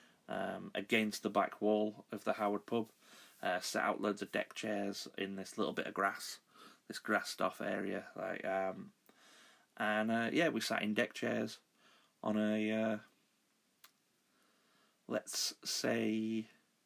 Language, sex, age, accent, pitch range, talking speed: English, male, 30-49, British, 100-115 Hz, 145 wpm